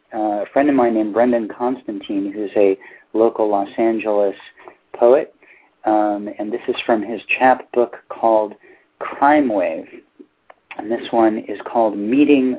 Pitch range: 115-170 Hz